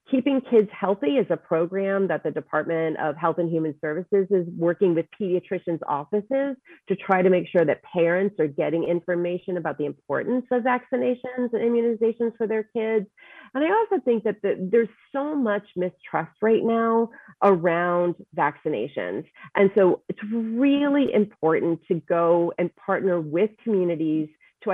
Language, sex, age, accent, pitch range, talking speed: English, female, 30-49, American, 165-210 Hz, 155 wpm